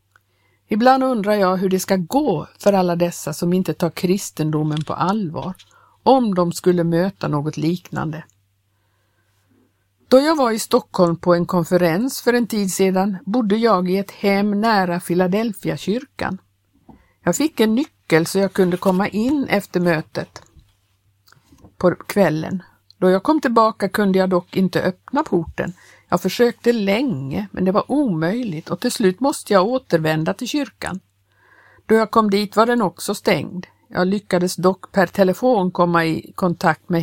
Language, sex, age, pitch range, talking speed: Swedish, female, 50-69, 160-205 Hz, 155 wpm